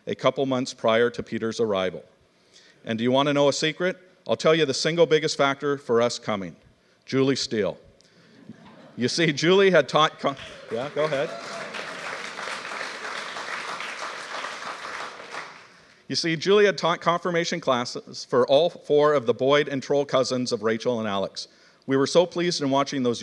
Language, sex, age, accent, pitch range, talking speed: English, male, 50-69, American, 125-155 Hz, 160 wpm